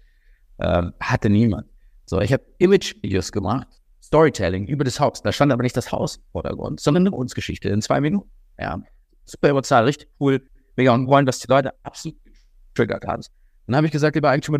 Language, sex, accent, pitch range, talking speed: German, male, German, 115-155 Hz, 190 wpm